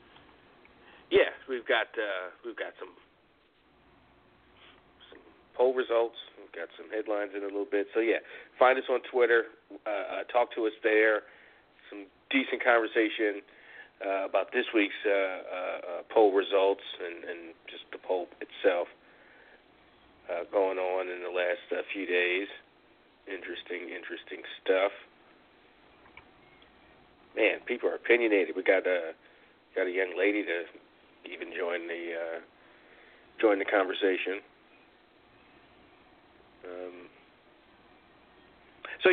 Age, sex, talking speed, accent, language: 40-59, male, 120 wpm, American, English